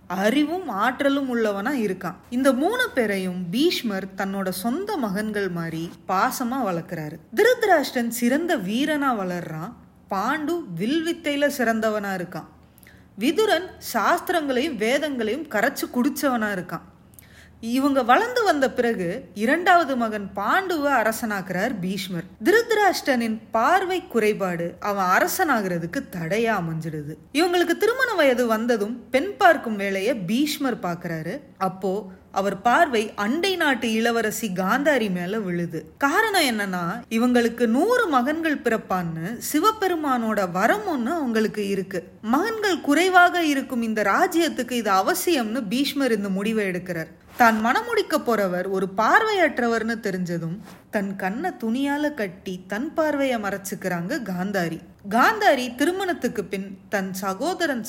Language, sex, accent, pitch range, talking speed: Tamil, female, native, 195-300 Hz, 95 wpm